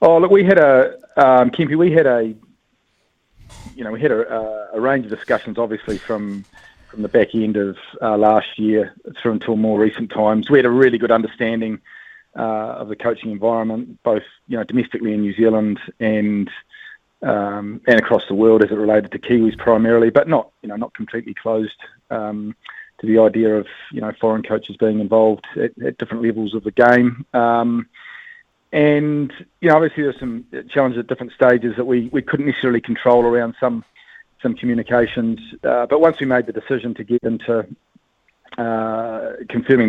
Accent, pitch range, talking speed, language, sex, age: Australian, 110-125 Hz, 185 wpm, English, male, 30-49